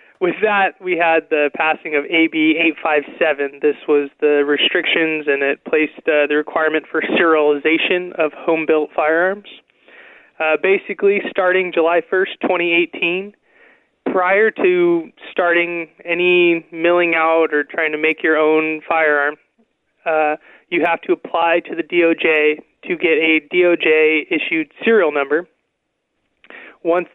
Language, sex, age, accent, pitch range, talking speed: English, male, 20-39, American, 155-175 Hz, 130 wpm